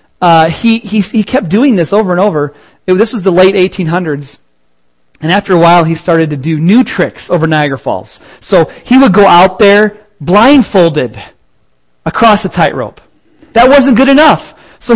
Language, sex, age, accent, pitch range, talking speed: English, male, 30-49, American, 150-220 Hz, 175 wpm